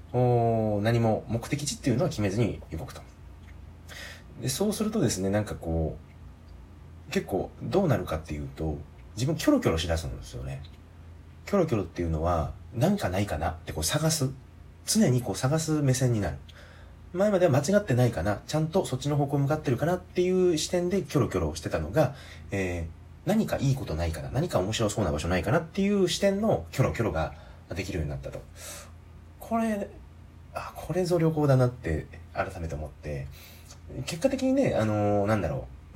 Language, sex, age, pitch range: Japanese, male, 30-49, 80-135 Hz